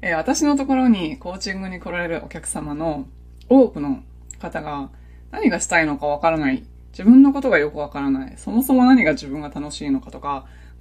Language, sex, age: Japanese, female, 20-39